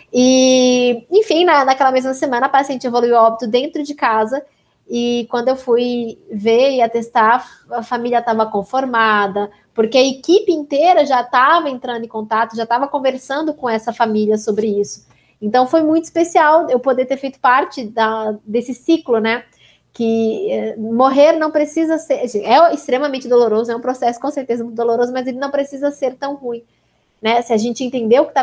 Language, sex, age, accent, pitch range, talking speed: Portuguese, female, 20-39, Brazilian, 225-270 Hz, 180 wpm